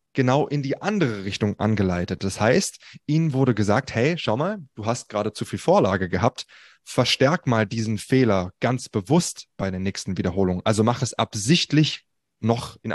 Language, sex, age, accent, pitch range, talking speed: German, male, 20-39, German, 100-130 Hz, 170 wpm